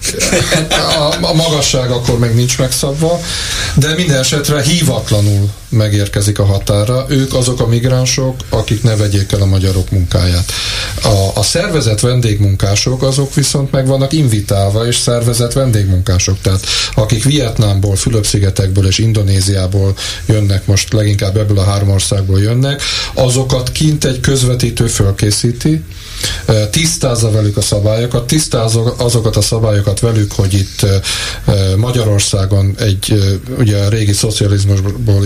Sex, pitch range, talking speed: male, 100-130 Hz, 125 wpm